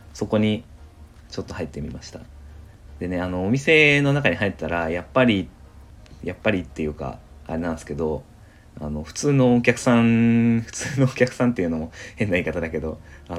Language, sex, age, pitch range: Japanese, male, 20-39, 80-110 Hz